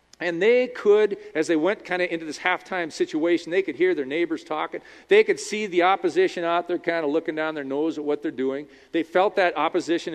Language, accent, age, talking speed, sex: English, American, 40-59, 230 wpm, male